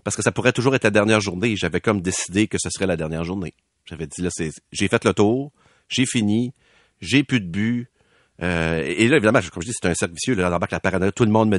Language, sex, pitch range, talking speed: French, male, 90-125 Hz, 275 wpm